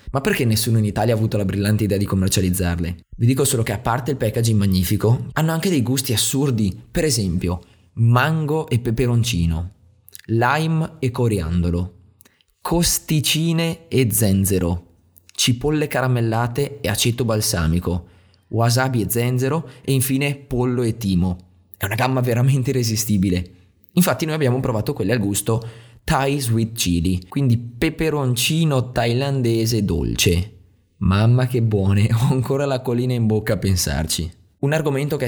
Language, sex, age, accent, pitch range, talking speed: Italian, male, 20-39, native, 100-130 Hz, 140 wpm